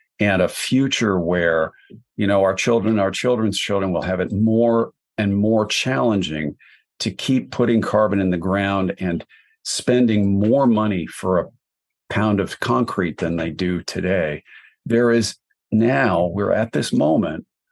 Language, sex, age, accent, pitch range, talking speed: English, male, 50-69, American, 95-120 Hz, 150 wpm